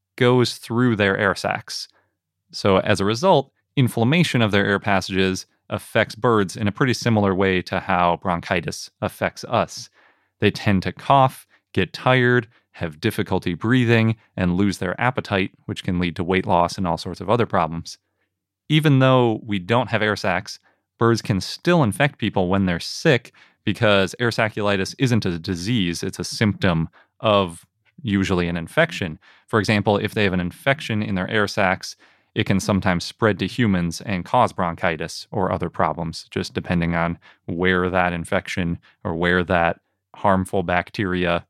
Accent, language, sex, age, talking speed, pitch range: American, English, male, 30-49, 165 wpm, 90-110 Hz